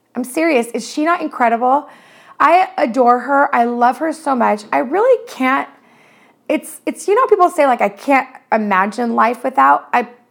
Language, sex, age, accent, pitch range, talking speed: English, female, 30-49, American, 215-275 Hz, 170 wpm